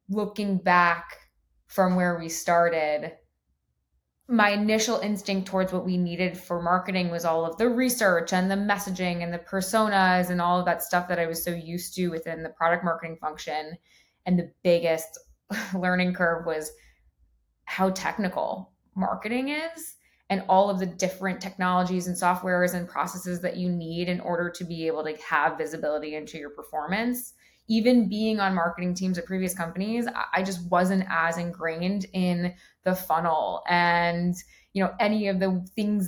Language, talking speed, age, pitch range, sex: English, 165 wpm, 20-39, 170-195 Hz, female